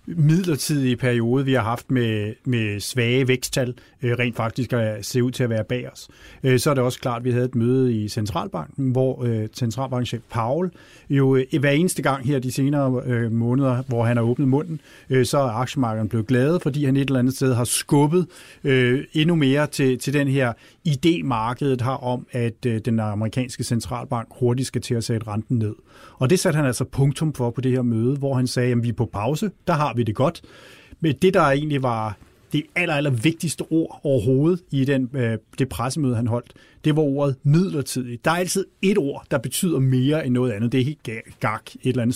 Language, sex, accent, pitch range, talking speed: Danish, male, native, 120-145 Hz, 205 wpm